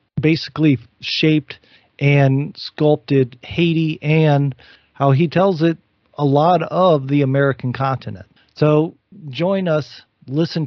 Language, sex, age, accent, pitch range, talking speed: English, male, 40-59, American, 130-155 Hz, 110 wpm